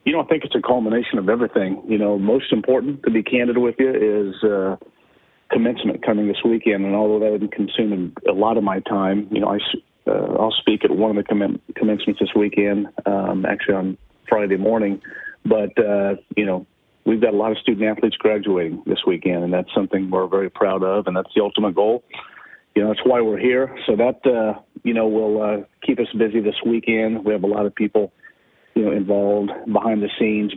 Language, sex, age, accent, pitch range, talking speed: English, male, 40-59, American, 100-110 Hz, 210 wpm